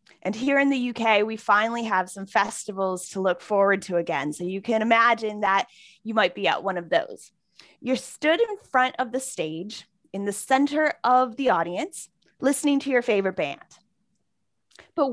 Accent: American